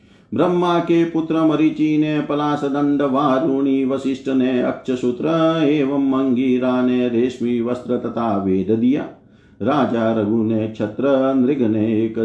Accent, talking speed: native, 125 wpm